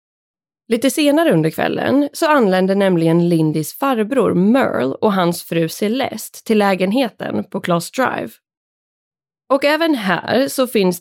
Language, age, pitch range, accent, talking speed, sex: Swedish, 20-39, 170-255 Hz, native, 130 wpm, female